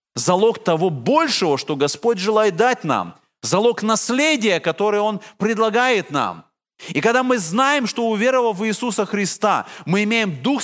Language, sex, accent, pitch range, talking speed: Russian, male, native, 160-235 Hz, 145 wpm